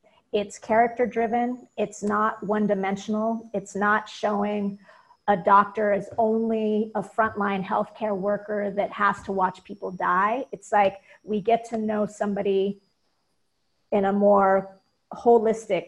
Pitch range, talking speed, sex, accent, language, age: 200-230 Hz, 130 wpm, female, American, English, 40-59